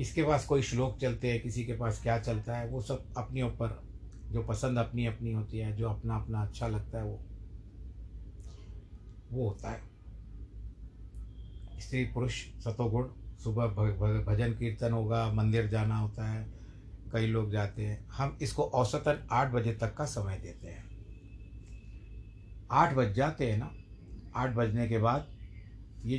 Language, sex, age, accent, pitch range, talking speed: Hindi, male, 50-69, native, 105-120 Hz, 155 wpm